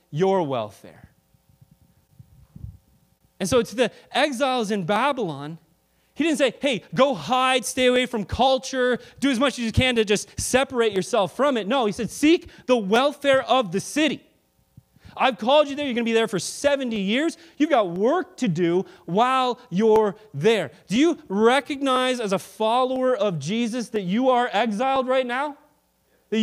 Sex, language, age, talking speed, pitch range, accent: male, English, 30-49, 170 wpm, 190-265 Hz, American